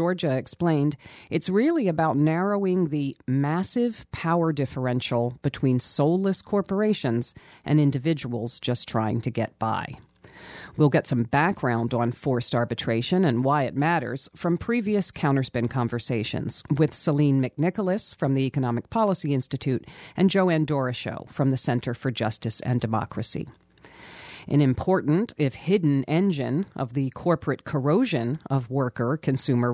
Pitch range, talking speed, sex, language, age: 125-165 Hz, 130 wpm, female, English, 40-59